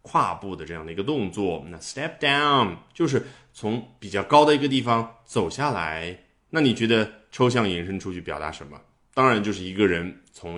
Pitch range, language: 90-130 Hz, Chinese